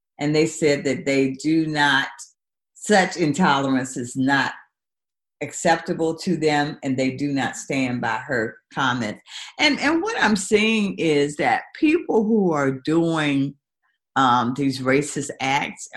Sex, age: female, 50-69